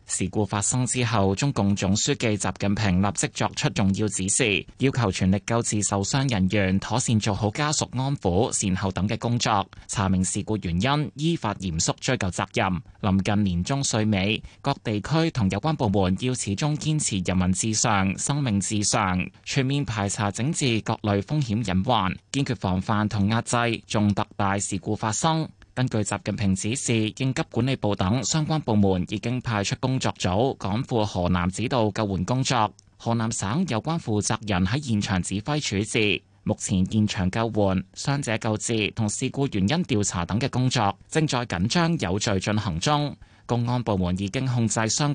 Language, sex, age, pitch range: Chinese, male, 20-39, 95-125 Hz